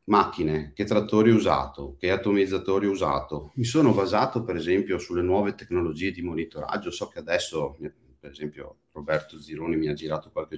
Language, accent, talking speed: Italian, native, 170 wpm